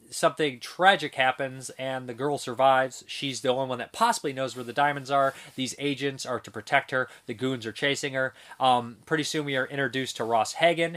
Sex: male